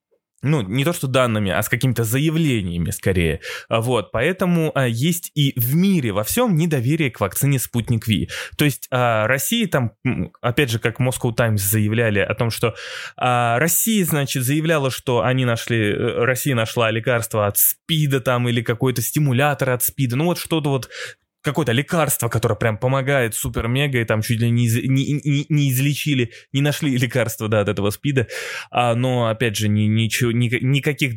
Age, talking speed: 20-39, 160 wpm